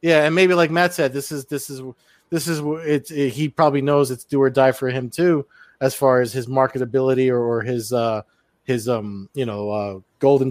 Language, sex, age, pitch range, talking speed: English, male, 20-39, 125-150 Hz, 225 wpm